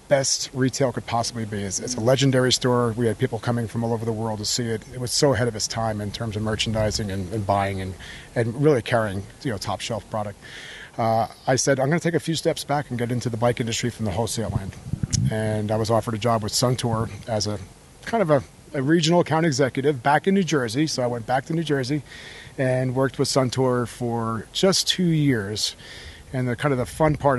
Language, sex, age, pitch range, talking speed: English, male, 40-59, 110-135 Hz, 240 wpm